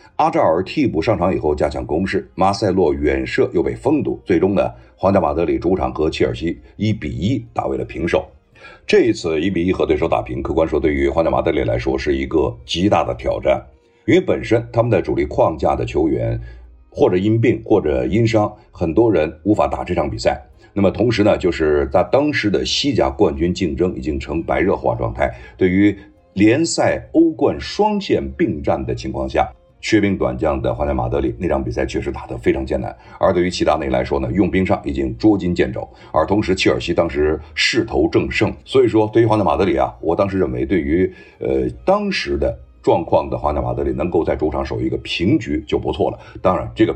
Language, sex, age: Chinese, male, 50-69